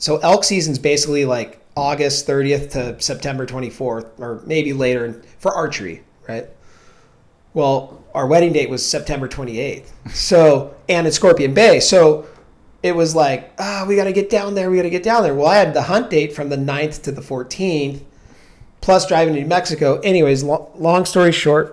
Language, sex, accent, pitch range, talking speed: English, male, American, 140-160 Hz, 190 wpm